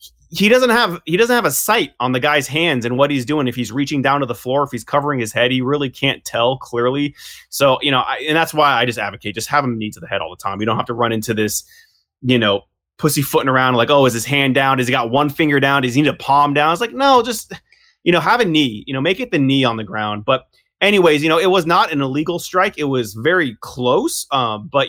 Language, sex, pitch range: English, male, 120-150 Hz